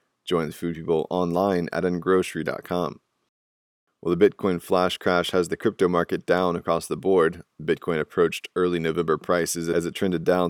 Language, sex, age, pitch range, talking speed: English, male, 20-39, 85-90 Hz, 165 wpm